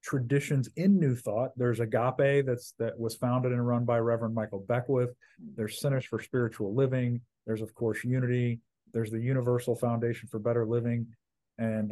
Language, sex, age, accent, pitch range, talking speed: English, male, 40-59, American, 115-135 Hz, 165 wpm